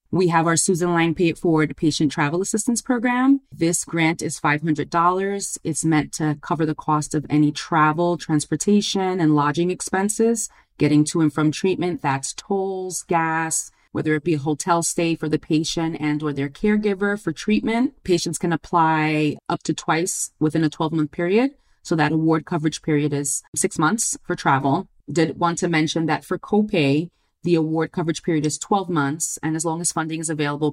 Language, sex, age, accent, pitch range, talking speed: English, female, 30-49, American, 150-175 Hz, 180 wpm